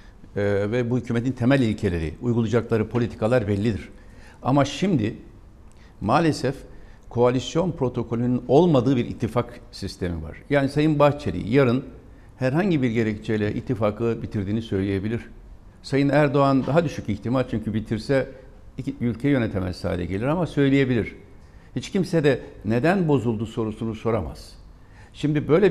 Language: Turkish